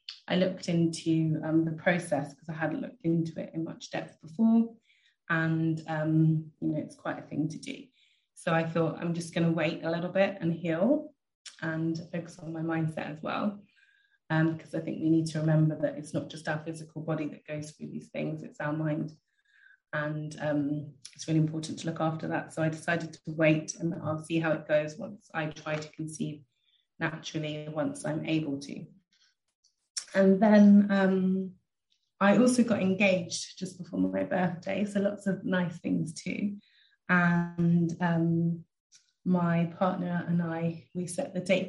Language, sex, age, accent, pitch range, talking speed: English, female, 20-39, British, 160-195 Hz, 180 wpm